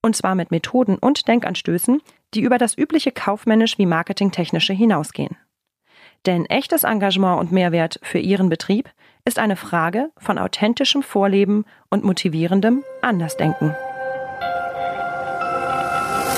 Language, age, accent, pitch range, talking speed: German, 40-59, German, 175-235 Hz, 115 wpm